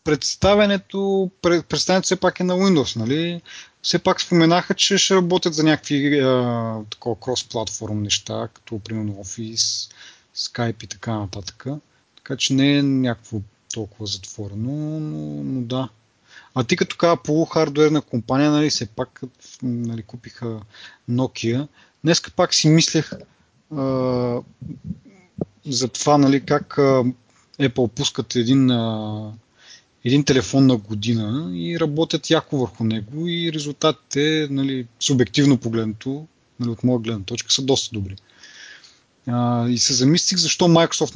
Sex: male